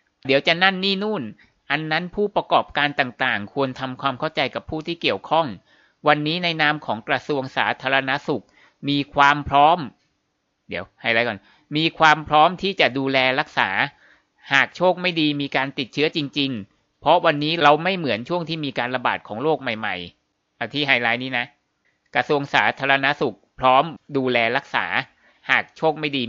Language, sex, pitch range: Thai, male, 120-150 Hz